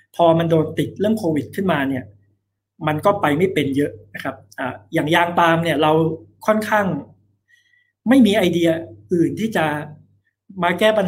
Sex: male